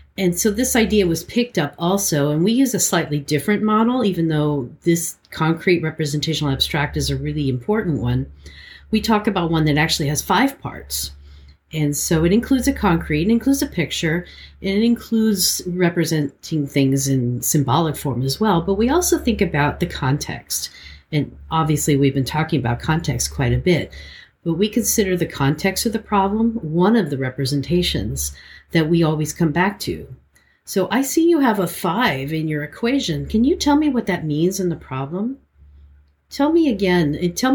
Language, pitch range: English, 140-205 Hz